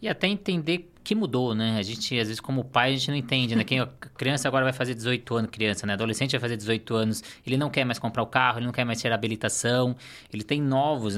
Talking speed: 260 wpm